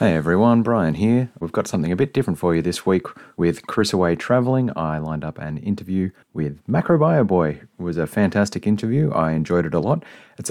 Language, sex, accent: English, male, Australian